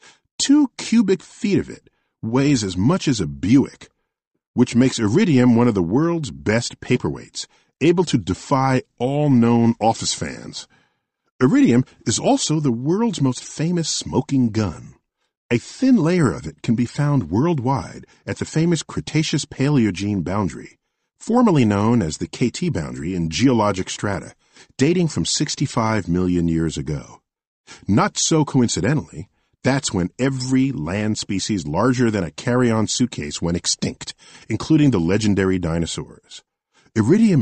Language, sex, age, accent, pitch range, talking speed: English, male, 50-69, American, 105-150 Hz, 135 wpm